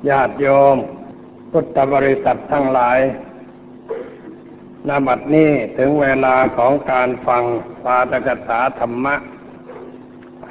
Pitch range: 120-135 Hz